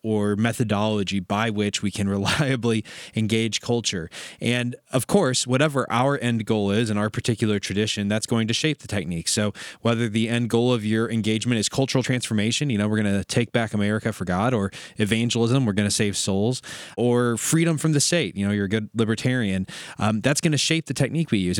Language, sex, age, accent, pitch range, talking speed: English, male, 20-39, American, 105-130 Hz, 200 wpm